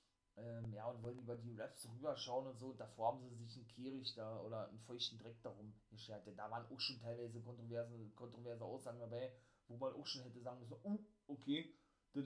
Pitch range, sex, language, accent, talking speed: 115-140 Hz, male, German, German, 215 wpm